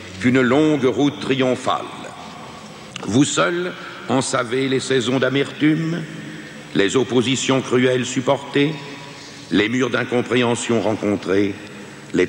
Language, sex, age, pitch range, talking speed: French, male, 60-79, 110-155 Hz, 100 wpm